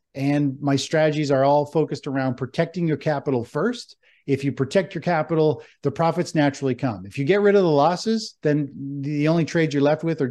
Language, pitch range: English, 130-155 Hz